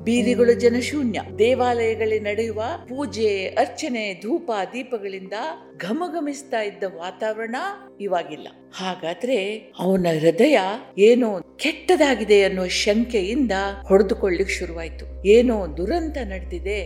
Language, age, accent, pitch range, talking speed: Kannada, 50-69, native, 165-245 Hz, 90 wpm